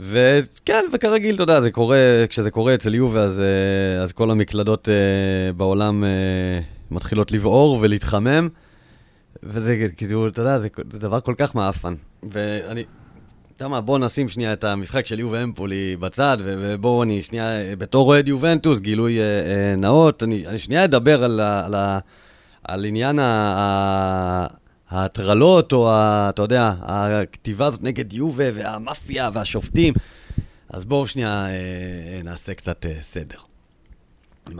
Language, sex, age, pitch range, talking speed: Hebrew, male, 30-49, 95-120 Hz, 140 wpm